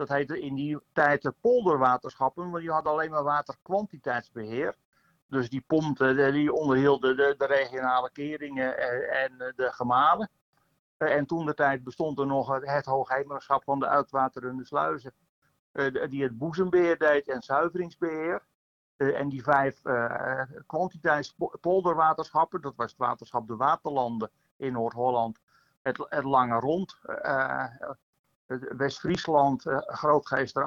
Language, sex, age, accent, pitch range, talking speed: Dutch, male, 50-69, Dutch, 130-155 Hz, 120 wpm